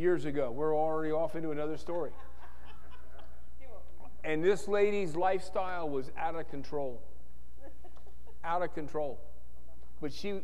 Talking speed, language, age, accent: 120 wpm, English, 50-69, American